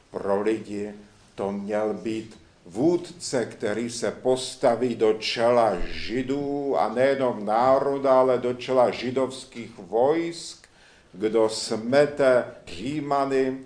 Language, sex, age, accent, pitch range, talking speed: Czech, male, 70-89, native, 115-135 Hz, 100 wpm